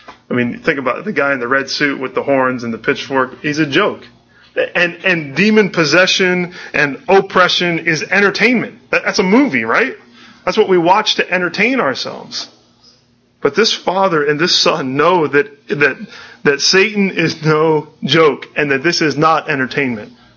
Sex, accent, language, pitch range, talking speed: male, American, English, 130-170 Hz, 170 wpm